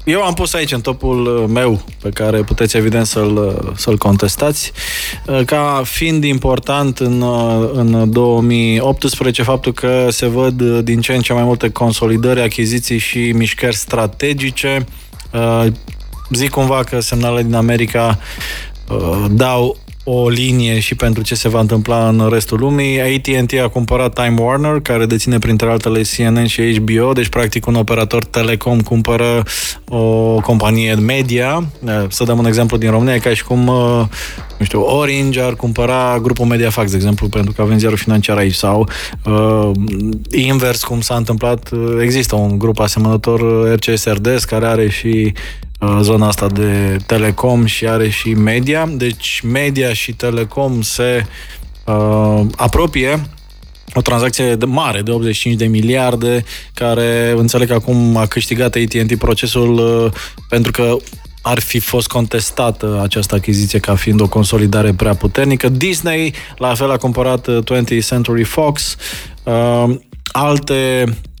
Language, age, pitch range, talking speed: Romanian, 20-39, 110-125 Hz, 140 wpm